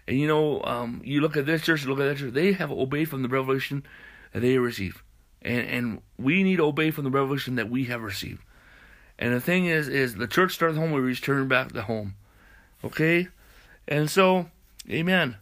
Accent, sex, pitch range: American, male, 120-140 Hz